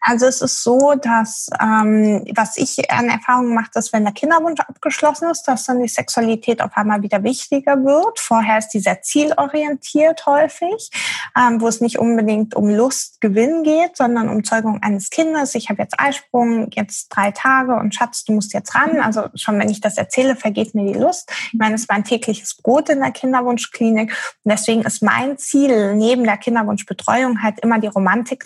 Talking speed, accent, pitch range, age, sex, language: 190 wpm, German, 215-270 Hz, 20-39, female, German